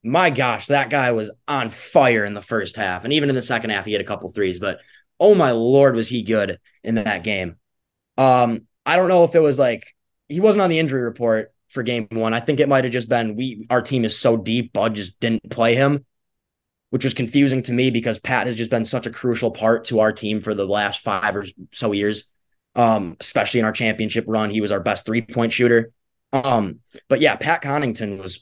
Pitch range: 110-130 Hz